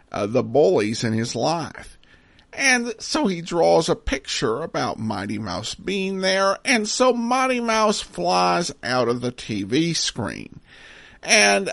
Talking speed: 145 wpm